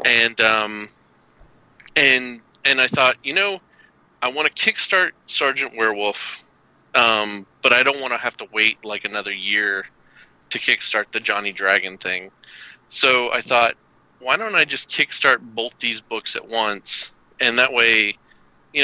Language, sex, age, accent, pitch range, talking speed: English, male, 30-49, American, 105-130 Hz, 155 wpm